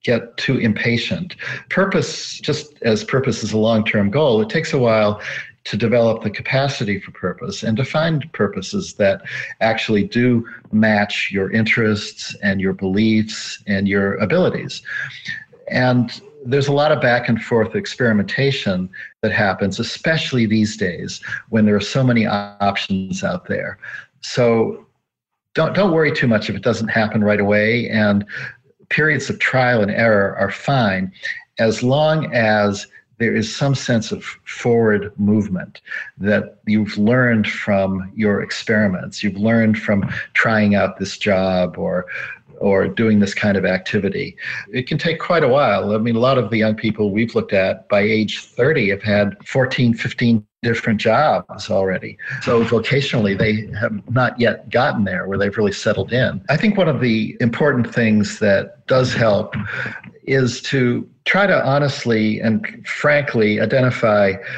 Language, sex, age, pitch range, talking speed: English, male, 50-69, 105-130 Hz, 155 wpm